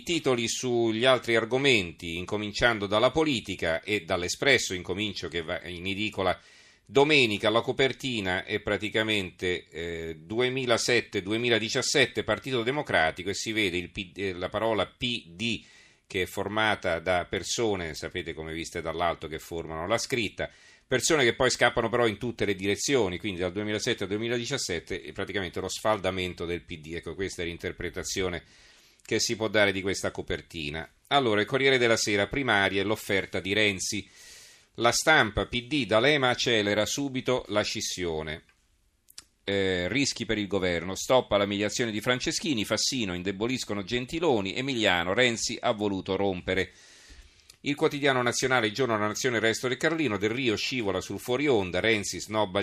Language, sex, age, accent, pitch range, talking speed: Italian, male, 40-59, native, 95-120 Hz, 145 wpm